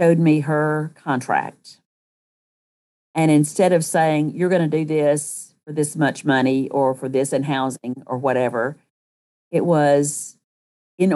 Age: 50-69